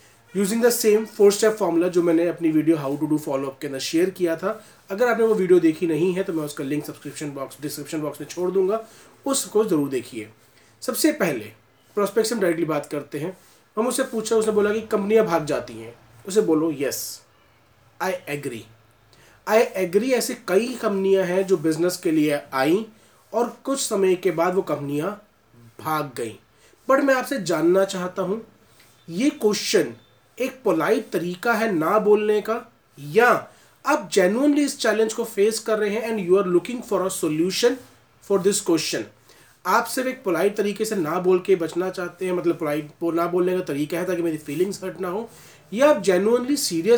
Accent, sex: native, male